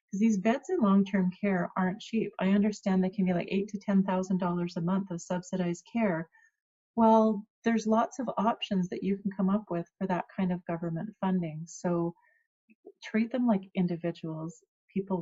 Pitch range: 170-205 Hz